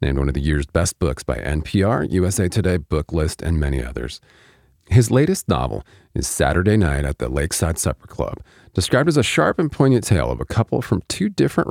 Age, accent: 40-59, American